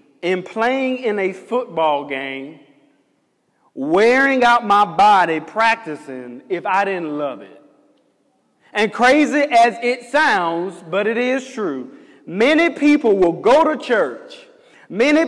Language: English